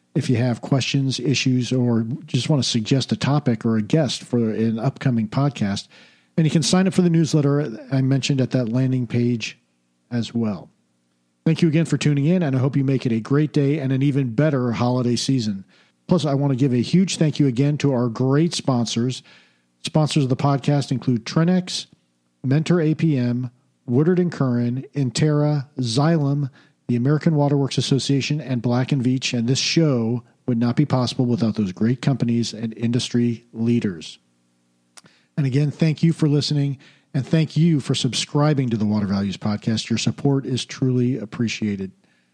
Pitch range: 120-150 Hz